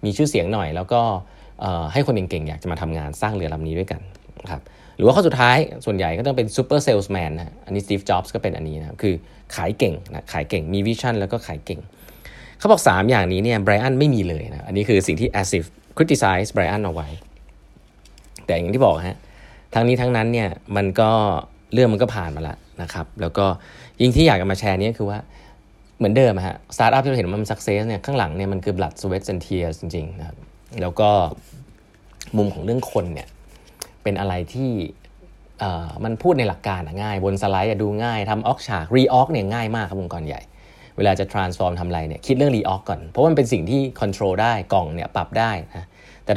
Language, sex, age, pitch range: Thai, male, 20-39, 90-115 Hz